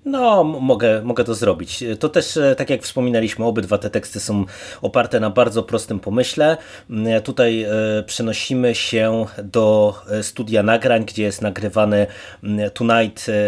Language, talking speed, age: Polish, 130 wpm, 30-49